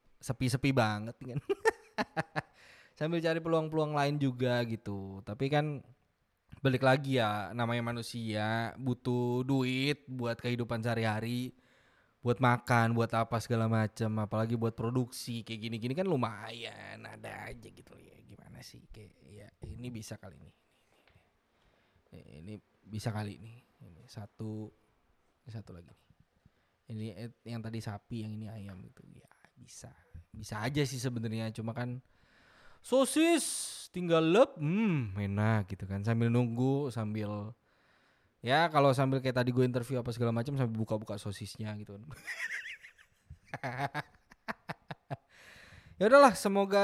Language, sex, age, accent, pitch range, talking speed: Indonesian, male, 20-39, native, 110-135 Hz, 130 wpm